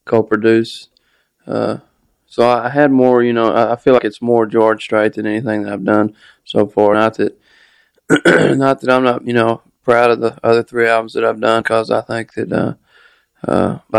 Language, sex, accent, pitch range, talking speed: English, male, American, 110-120 Hz, 190 wpm